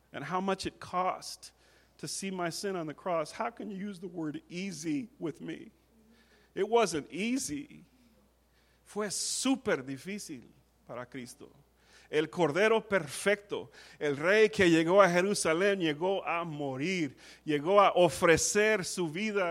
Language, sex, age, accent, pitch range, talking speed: English, male, 40-59, American, 180-240 Hz, 140 wpm